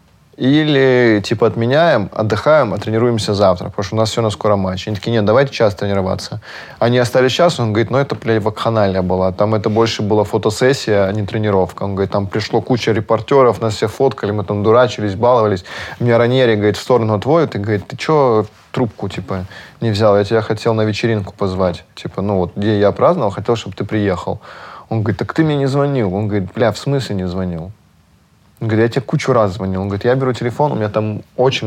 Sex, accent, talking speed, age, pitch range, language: male, native, 210 wpm, 20-39, 100-120 Hz, Russian